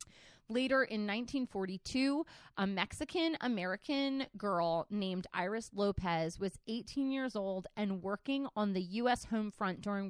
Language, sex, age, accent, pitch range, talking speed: English, female, 30-49, American, 195-250 Hz, 125 wpm